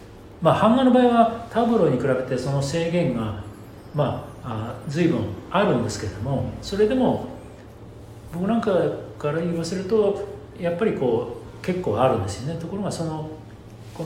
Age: 40-59